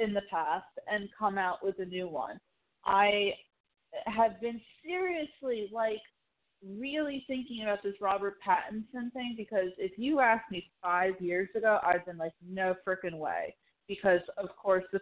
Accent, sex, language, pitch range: American, female, English, 175-210 Hz